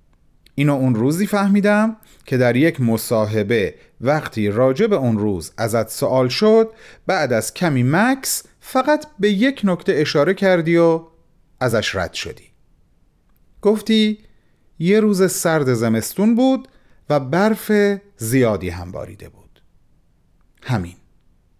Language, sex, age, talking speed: Persian, male, 40-59, 115 wpm